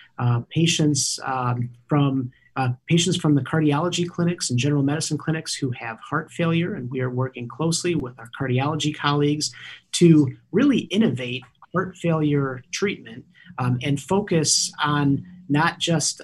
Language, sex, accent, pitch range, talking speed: English, male, American, 125-160 Hz, 145 wpm